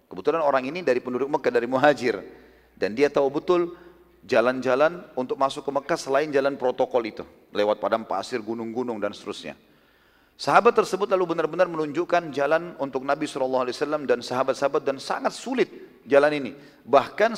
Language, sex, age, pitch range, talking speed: Indonesian, male, 40-59, 125-160 Hz, 150 wpm